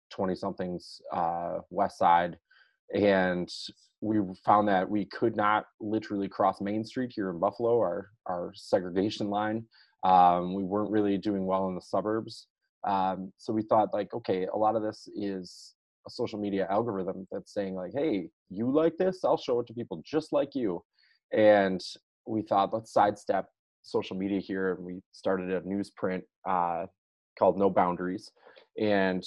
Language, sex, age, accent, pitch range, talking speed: English, male, 20-39, American, 90-105 Hz, 165 wpm